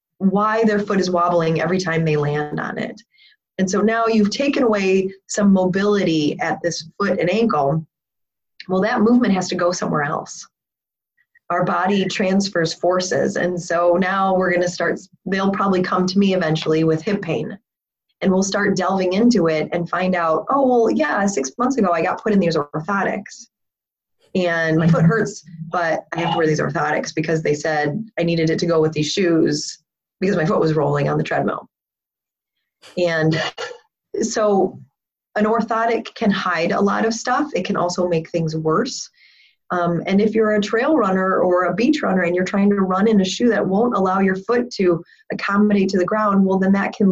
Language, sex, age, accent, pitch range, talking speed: English, female, 20-39, American, 170-205 Hz, 195 wpm